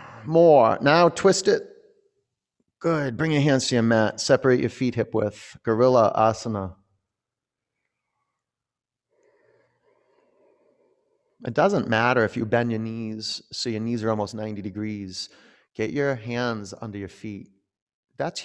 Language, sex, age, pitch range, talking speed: English, male, 30-49, 105-145 Hz, 130 wpm